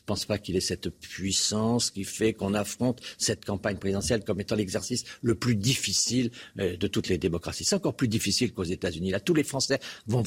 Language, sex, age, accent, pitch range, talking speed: French, male, 50-69, French, 100-135 Hz, 215 wpm